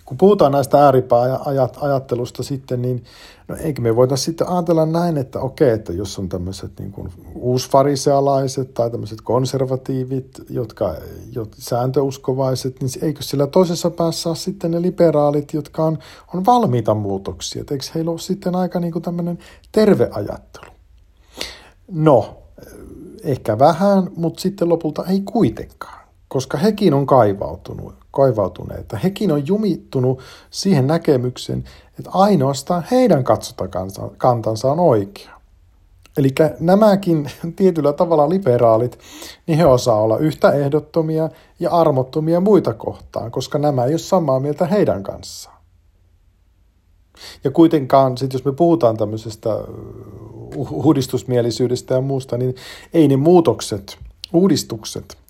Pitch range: 120-165 Hz